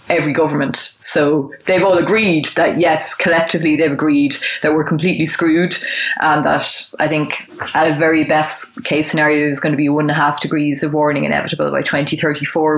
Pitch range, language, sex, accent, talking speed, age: 145-165 Hz, English, female, Irish, 185 wpm, 20-39